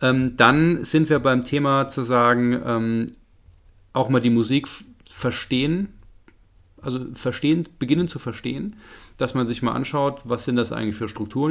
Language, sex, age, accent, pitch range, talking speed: German, male, 40-59, German, 105-130 Hz, 145 wpm